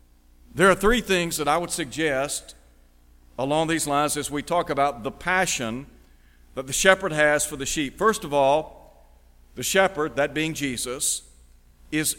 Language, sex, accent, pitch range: English, male, American, 125-170 Hz